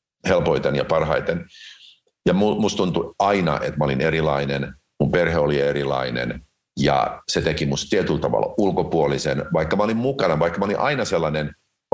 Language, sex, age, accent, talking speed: Finnish, male, 50-69, native, 160 wpm